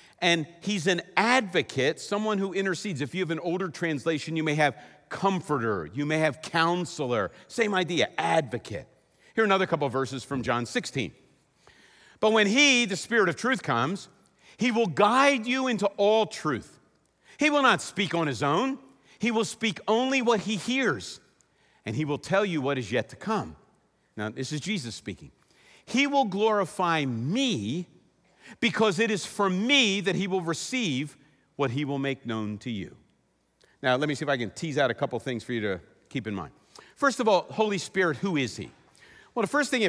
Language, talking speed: English, 195 wpm